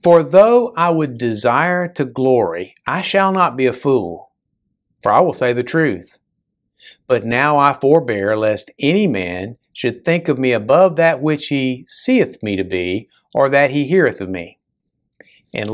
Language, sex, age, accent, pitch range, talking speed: English, male, 50-69, American, 110-155 Hz, 170 wpm